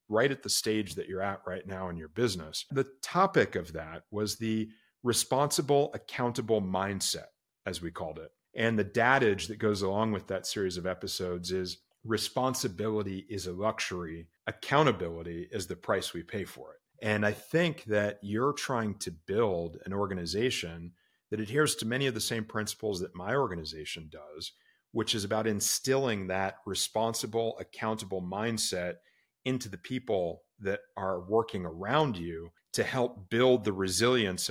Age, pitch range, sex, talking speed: 40-59, 95-125 Hz, male, 160 wpm